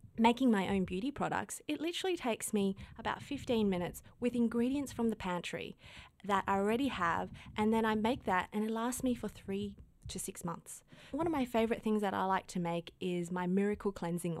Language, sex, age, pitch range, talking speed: English, female, 20-39, 180-240 Hz, 205 wpm